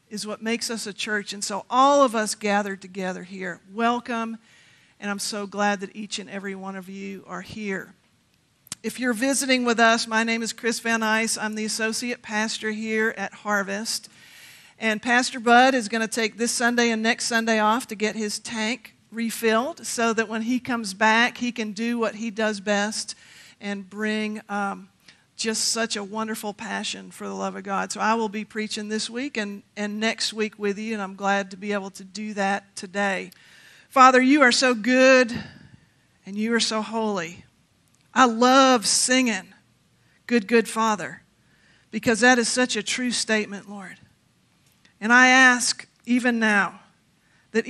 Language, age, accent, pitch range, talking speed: English, 50-69, American, 205-235 Hz, 180 wpm